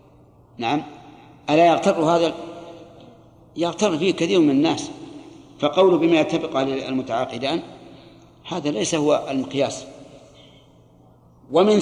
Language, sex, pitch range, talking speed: Arabic, male, 140-180 Hz, 95 wpm